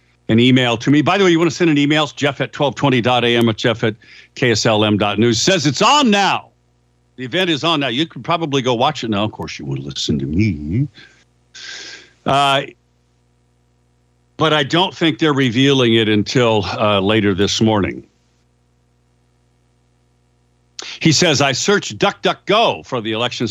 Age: 60-79